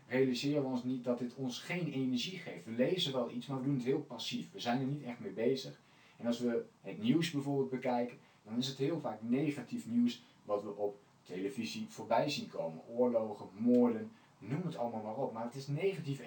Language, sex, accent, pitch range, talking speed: Dutch, male, Dutch, 120-155 Hz, 220 wpm